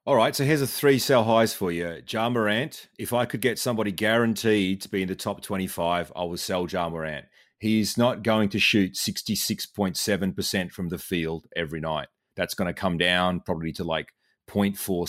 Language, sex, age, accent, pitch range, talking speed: English, male, 30-49, Australian, 85-105 Hz, 210 wpm